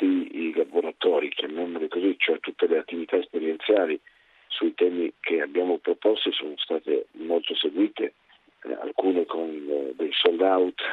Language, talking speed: Italian, 120 wpm